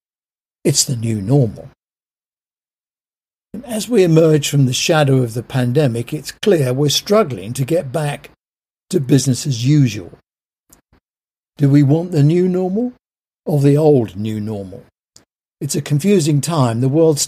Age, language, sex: 60-79, English, male